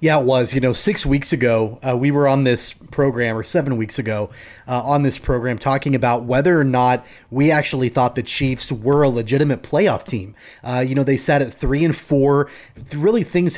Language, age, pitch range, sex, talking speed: English, 30-49, 125-160 Hz, male, 210 wpm